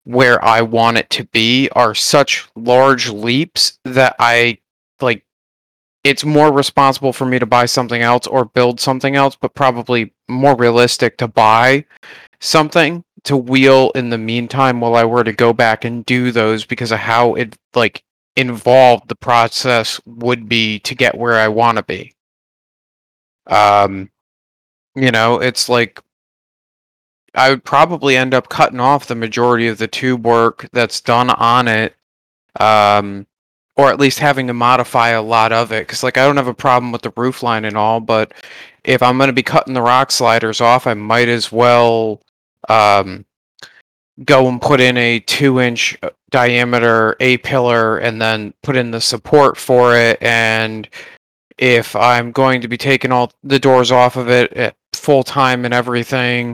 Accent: American